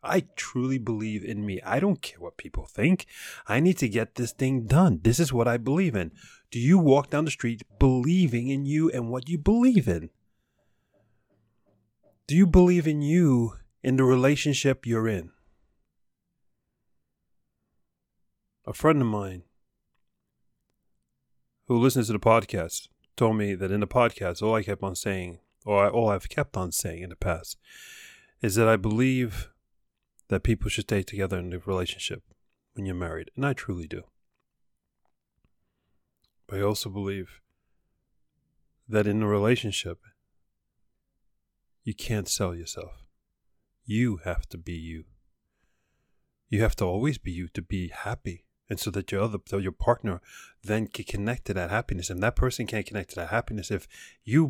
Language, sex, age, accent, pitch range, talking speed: English, male, 30-49, American, 95-125 Hz, 160 wpm